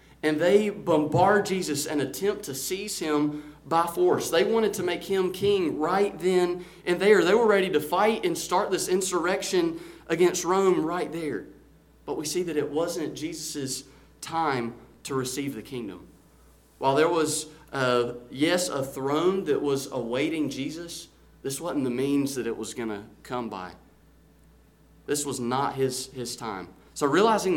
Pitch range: 140-180 Hz